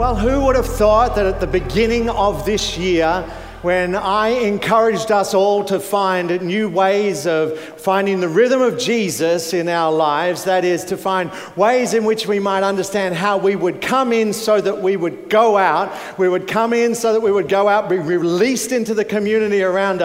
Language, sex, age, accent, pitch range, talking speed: English, male, 40-59, Australian, 185-225 Hz, 200 wpm